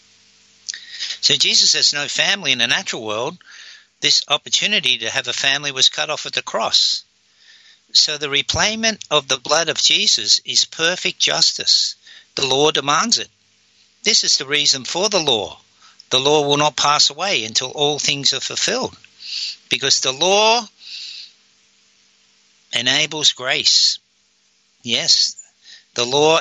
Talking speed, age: 140 wpm, 60-79